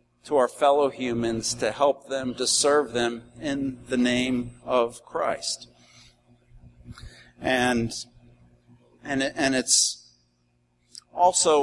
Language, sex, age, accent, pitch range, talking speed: English, male, 50-69, American, 120-155 Hz, 110 wpm